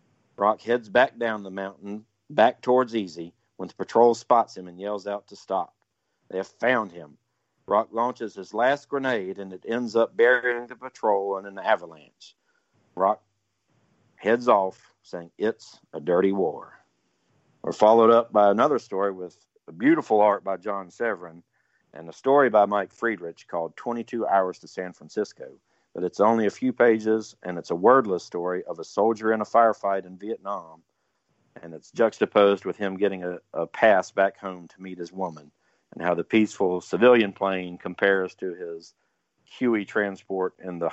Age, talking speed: 50-69, 175 wpm